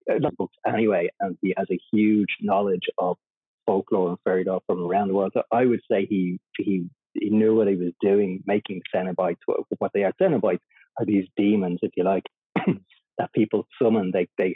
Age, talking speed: 30-49, 190 wpm